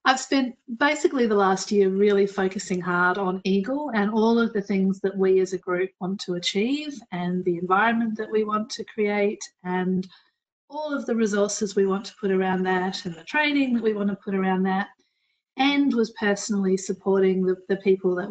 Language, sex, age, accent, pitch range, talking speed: English, female, 40-59, Australian, 185-225 Hz, 200 wpm